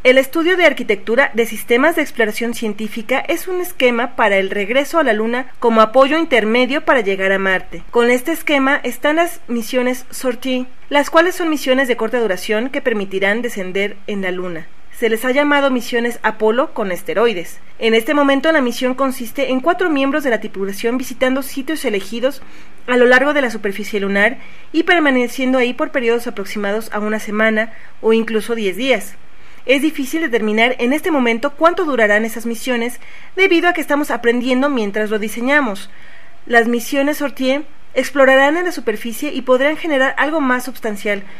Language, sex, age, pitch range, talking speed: Spanish, female, 40-59, 215-280 Hz, 170 wpm